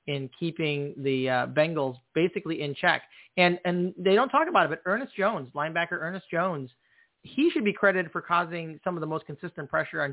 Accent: American